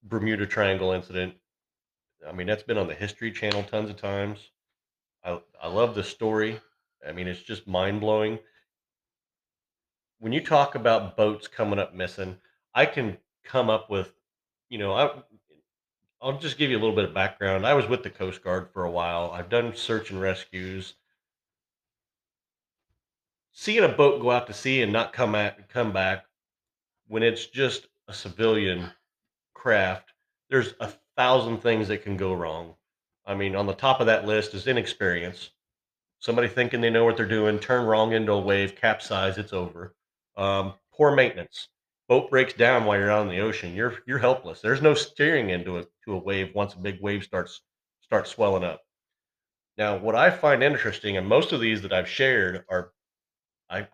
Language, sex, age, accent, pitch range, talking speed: English, male, 40-59, American, 95-115 Hz, 180 wpm